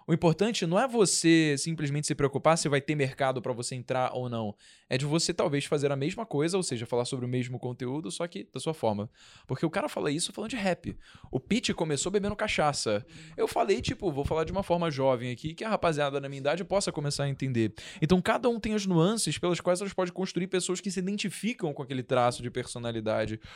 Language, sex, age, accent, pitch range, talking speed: Portuguese, male, 10-29, Brazilian, 130-175 Hz, 230 wpm